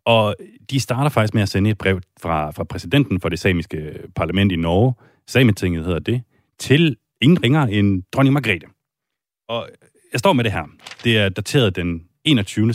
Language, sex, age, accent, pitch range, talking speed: Danish, male, 30-49, native, 90-125 Hz, 180 wpm